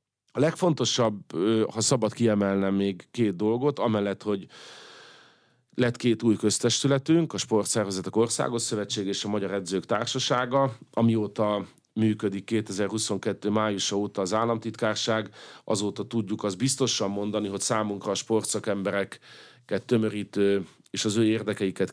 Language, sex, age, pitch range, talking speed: Hungarian, male, 40-59, 100-120 Hz, 120 wpm